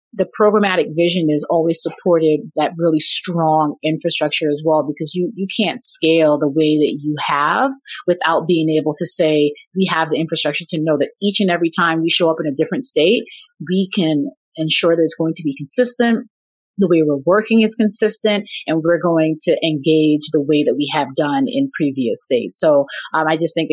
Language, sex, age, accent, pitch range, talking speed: English, female, 30-49, American, 150-190 Hz, 200 wpm